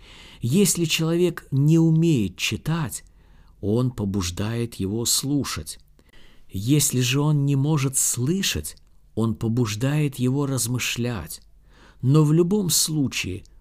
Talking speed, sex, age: 100 wpm, male, 50-69